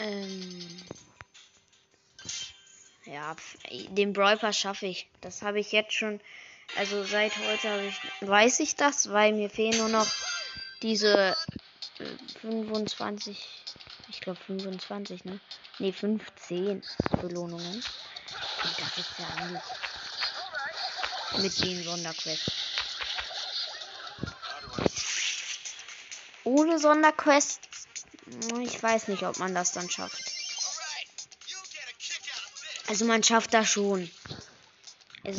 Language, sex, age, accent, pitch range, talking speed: German, female, 20-39, German, 190-220 Hz, 95 wpm